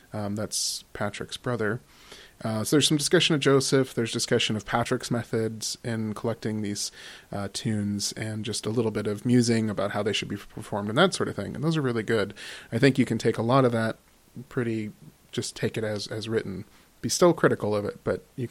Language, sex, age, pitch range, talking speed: English, male, 30-49, 110-130 Hz, 215 wpm